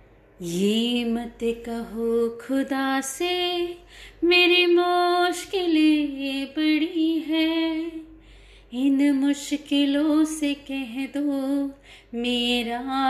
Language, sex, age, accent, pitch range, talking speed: Hindi, female, 30-49, native, 240-355 Hz, 80 wpm